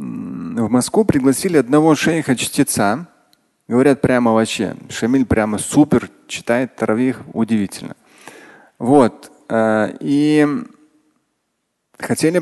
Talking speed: 80 wpm